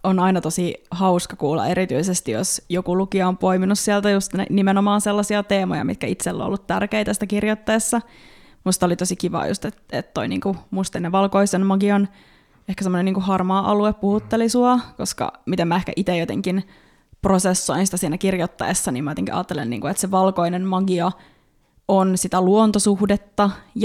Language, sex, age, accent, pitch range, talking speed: Finnish, female, 20-39, native, 175-200 Hz, 150 wpm